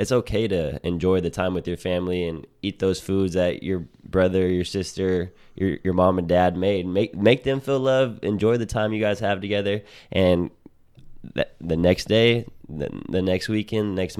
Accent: American